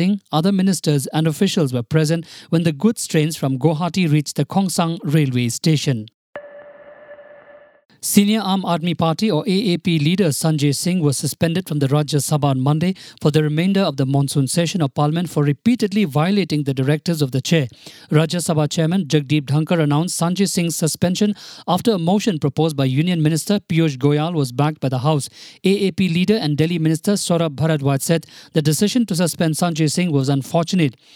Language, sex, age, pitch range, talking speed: English, male, 50-69, 150-190 Hz, 175 wpm